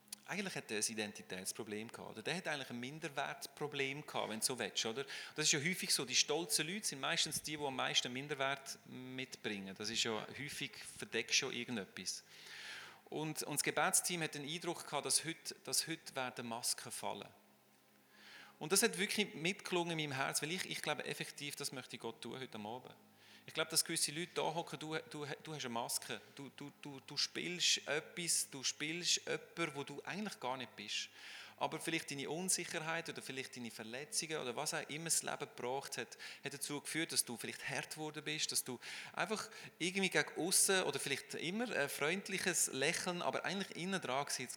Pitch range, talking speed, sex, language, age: 125-165 Hz, 190 wpm, male, English, 40-59